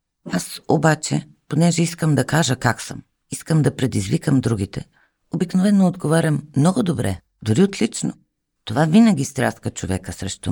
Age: 50-69